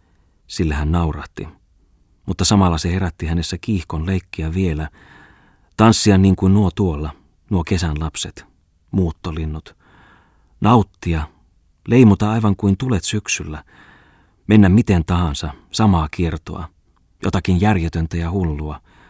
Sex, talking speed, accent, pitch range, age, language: male, 110 wpm, native, 80-95 Hz, 30-49, Finnish